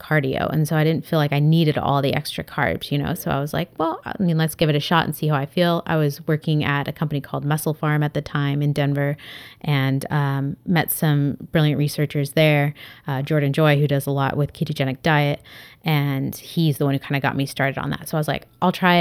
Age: 30-49